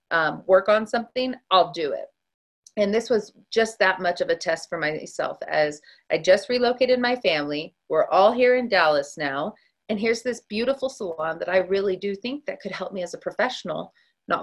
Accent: American